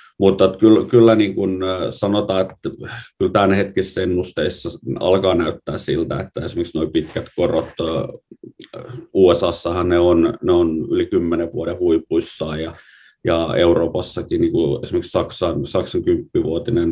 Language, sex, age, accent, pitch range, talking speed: Finnish, male, 30-49, native, 85-120 Hz, 125 wpm